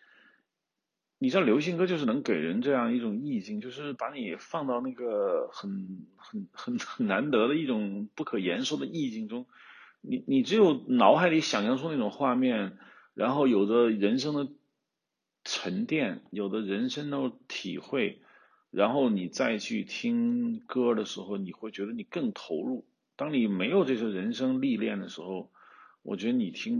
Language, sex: Chinese, male